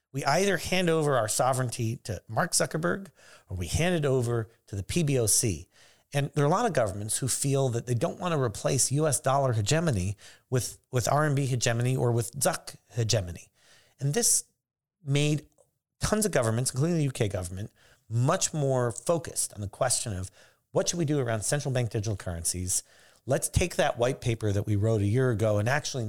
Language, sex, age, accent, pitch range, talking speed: English, male, 40-59, American, 105-140 Hz, 190 wpm